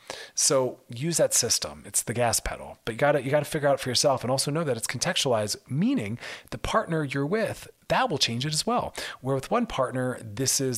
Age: 40-59